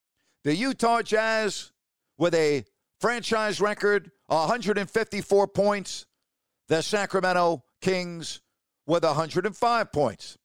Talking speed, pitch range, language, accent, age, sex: 85 wpm, 175-225 Hz, English, American, 50-69, male